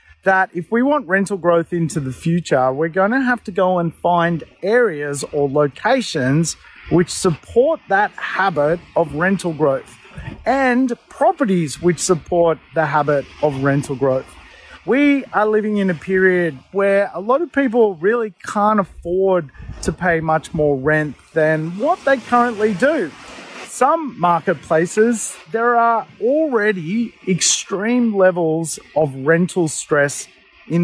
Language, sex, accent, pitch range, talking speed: English, male, Australian, 160-220 Hz, 140 wpm